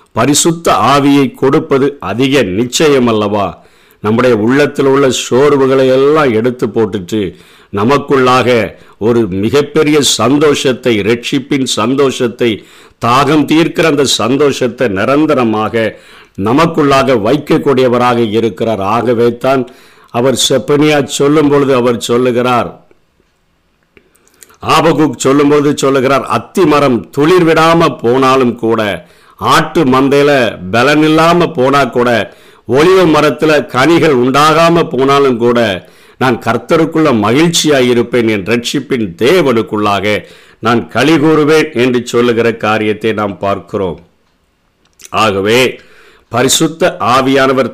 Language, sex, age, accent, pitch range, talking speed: Tamil, male, 50-69, native, 115-145 Hz, 90 wpm